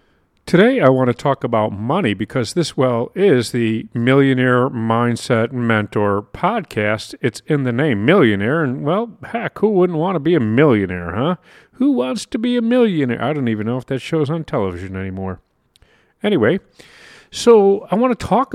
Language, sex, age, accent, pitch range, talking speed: English, male, 40-59, American, 110-170 Hz, 175 wpm